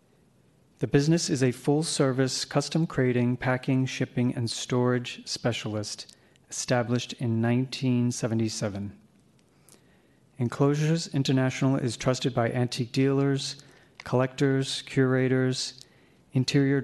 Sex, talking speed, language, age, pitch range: male, 90 wpm, English, 40-59, 120-135 Hz